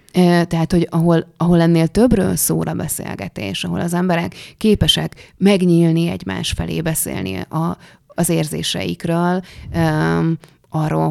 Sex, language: female, Hungarian